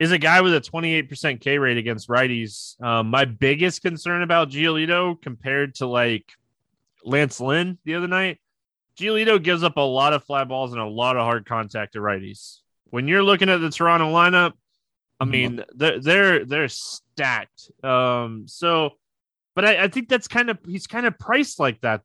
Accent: American